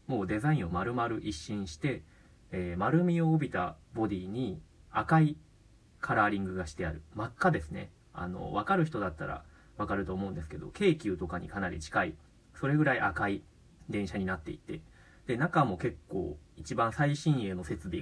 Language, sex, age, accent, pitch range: Japanese, male, 30-49, native, 90-140 Hz